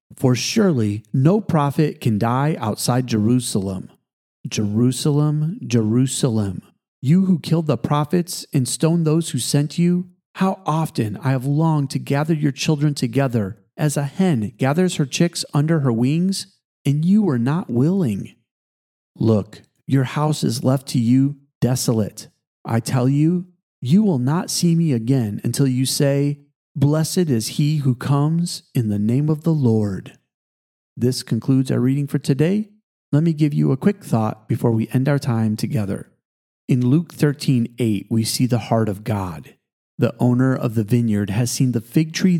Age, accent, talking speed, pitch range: 40-59, American, 165 wpm, 115-155 Hz